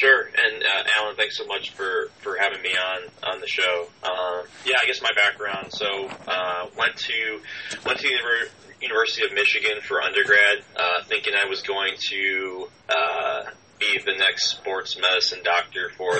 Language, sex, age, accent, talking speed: English, male, 30-49, American, 180 wpm